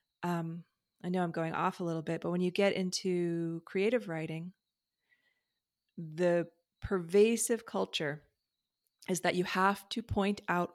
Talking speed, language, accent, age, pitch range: 145 wpm, English, American, 30-49, 170-210 Hz